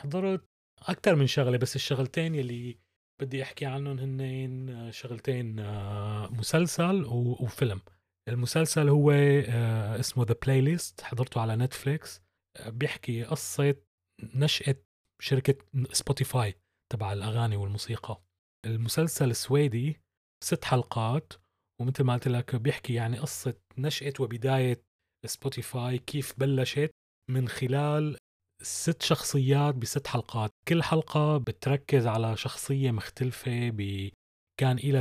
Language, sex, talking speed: Arabic, male, 105 wpm